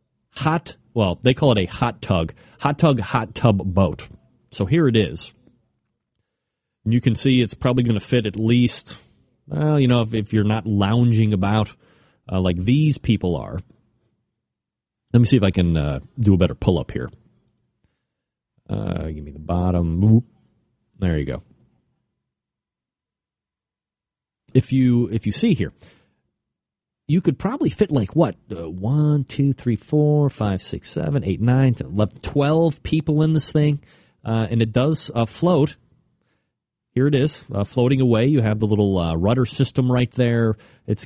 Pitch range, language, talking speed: 100-130 Hz, English, 160 wpm